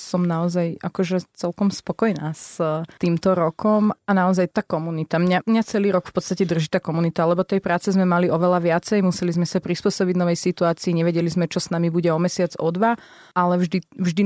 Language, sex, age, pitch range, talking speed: Slovak, female, 30-49, 165-180 Hz, 200 wpm